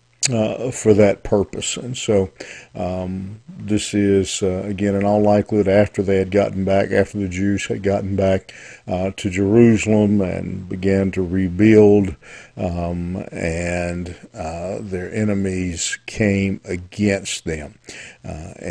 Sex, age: male, 50-69